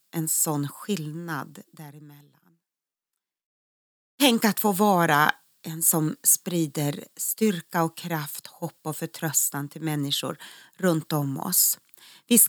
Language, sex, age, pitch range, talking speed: Swedish, female, 30-49, 155-205 Hz, 110 wpm